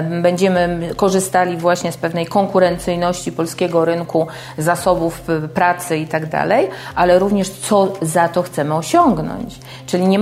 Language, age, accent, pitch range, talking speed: Polish, 40-59, native, 165-200 Hz, 125 wpm